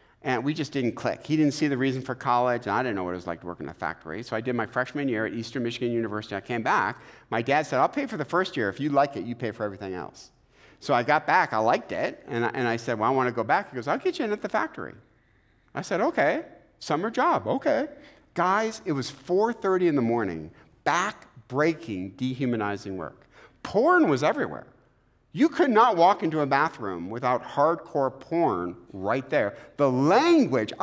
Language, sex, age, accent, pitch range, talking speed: English, male, 50-69, American, 110-150 Hz, 230 wpm